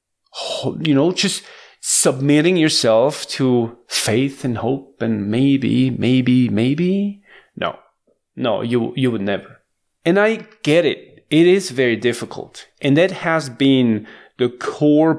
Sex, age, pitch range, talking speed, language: male, 40-59, 125-180 Hz, 130 wpm, English